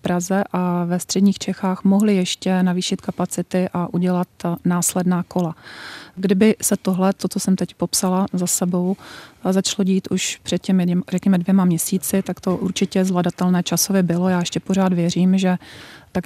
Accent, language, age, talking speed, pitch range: native, Czech, 30-49, 160 wpm, 180-195 Hz